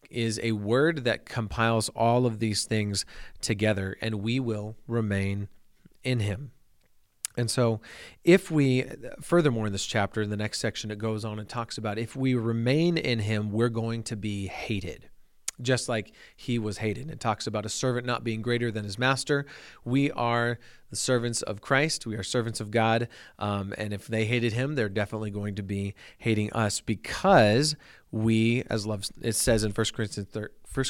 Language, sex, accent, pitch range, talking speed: English, male, American, 110-125 Hz, 185 wpm